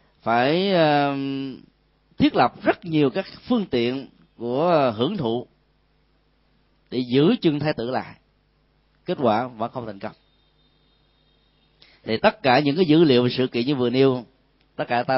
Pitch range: 125-170 Hz